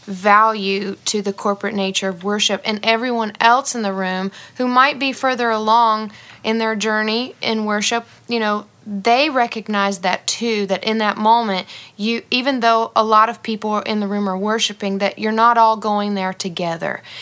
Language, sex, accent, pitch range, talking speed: English, female, American, 205-235 Hz, 180 wpm